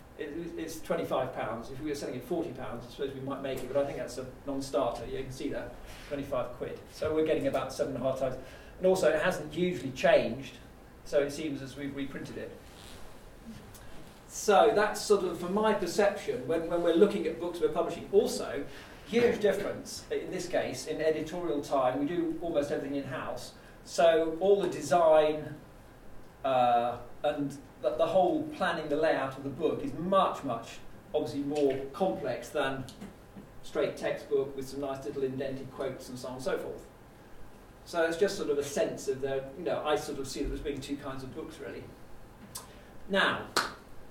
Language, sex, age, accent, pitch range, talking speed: English, male, 40-59, British, 135-185 Hz, 190 wpm